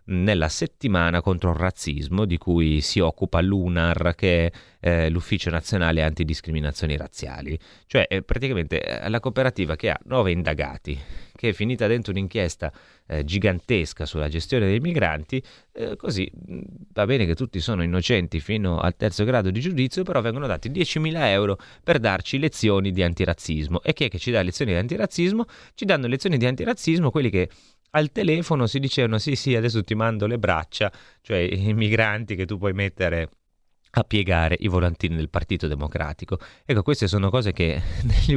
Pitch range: 85-110 Hz